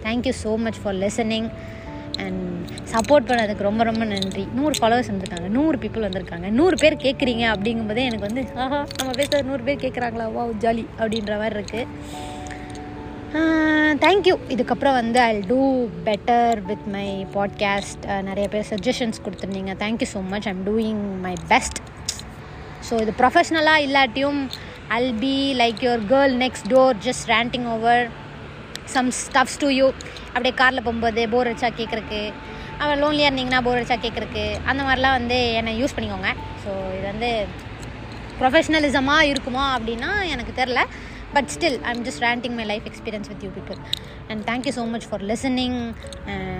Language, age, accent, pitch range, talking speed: Tamil, 20-39, native, 215-265 Hz, 175 wpm